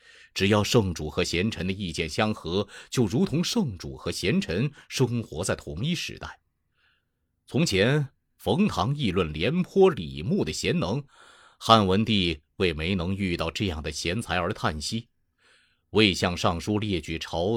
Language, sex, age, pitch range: Chinese, male, 30-49, 85-125 Hz